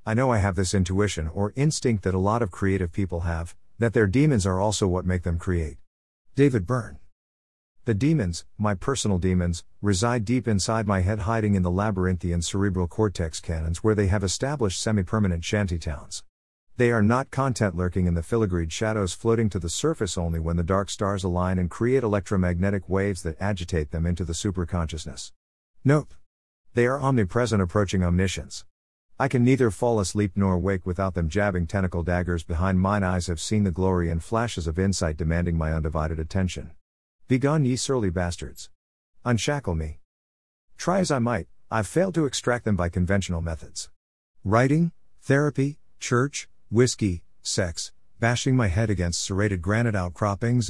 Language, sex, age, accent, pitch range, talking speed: English, male, 50-69, American, 85-115 Hz, 170 wpm